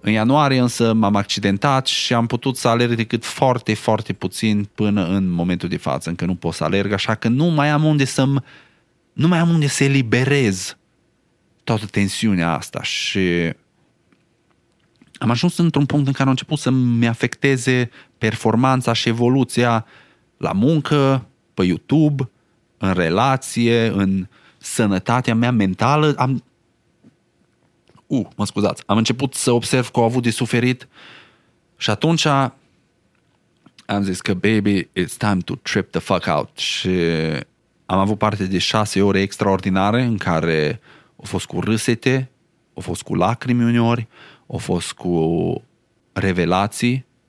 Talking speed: 145 wpm